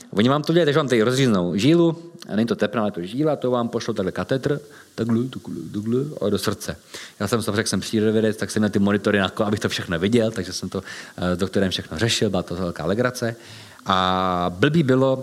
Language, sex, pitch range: Czech, male, 100-130 Hz